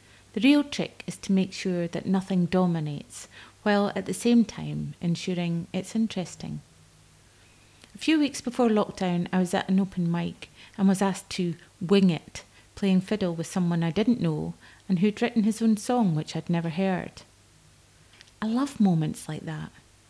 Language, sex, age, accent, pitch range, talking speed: English, female, 30-49, British, 155-200 Hz, 170 wpm